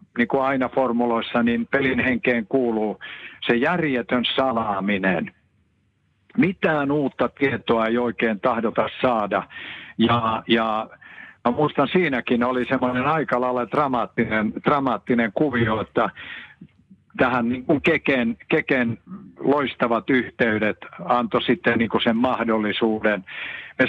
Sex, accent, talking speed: male, native, 105 wpm